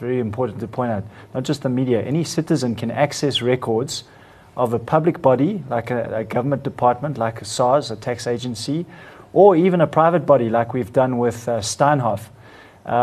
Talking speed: 185 wpm